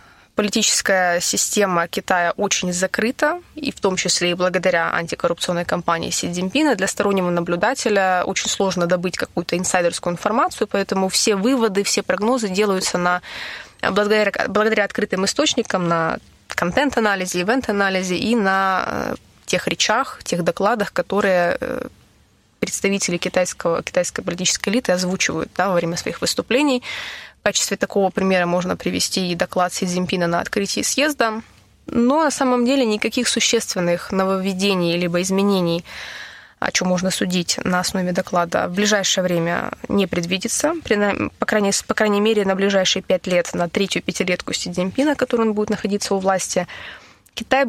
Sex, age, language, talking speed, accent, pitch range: female, 20-39, Russian, 135 wpm, native, 180-220 Hz